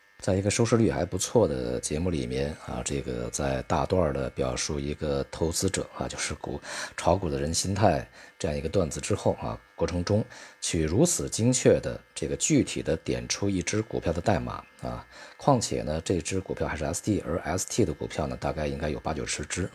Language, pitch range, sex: Chinese, 70-100 Hz, male